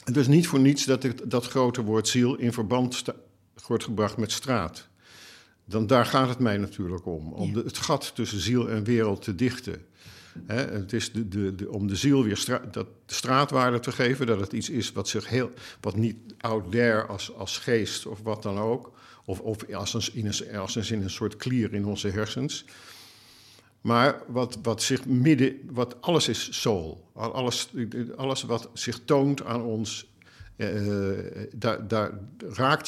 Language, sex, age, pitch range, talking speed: Dutch, male, 50-69, 105-125 Hz, 190 wpm